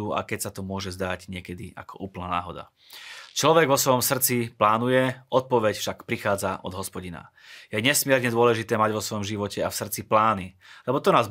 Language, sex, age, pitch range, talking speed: Slovak, male, 30-49, 100-125 Hz, 180 wpm